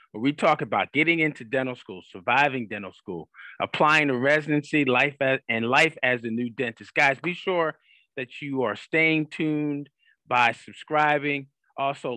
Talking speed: 165 wpm